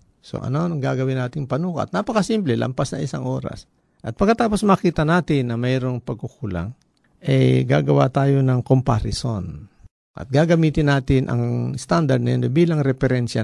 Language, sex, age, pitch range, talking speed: Filipino, male, 50-69, 110-145 Hz, 145 wpm